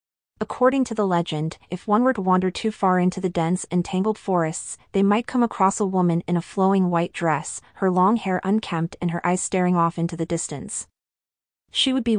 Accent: American